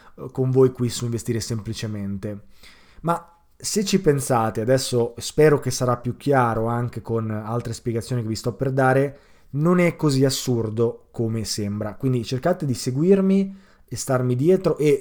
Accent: native